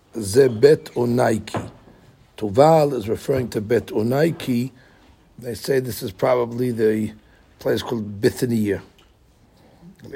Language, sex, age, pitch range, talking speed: English, male, 60-79, 105-125 Hz, 100 wpm